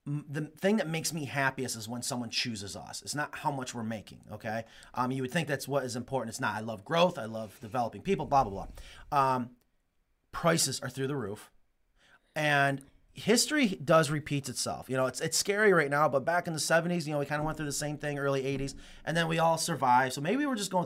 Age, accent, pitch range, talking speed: 30-49, American, 120-155 Hz, 240 wpm